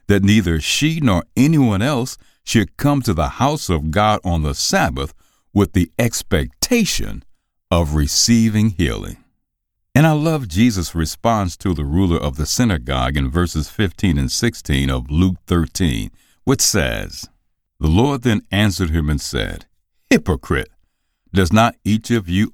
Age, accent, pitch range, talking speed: 60-79, American, 80-115 Hz, 150 wpm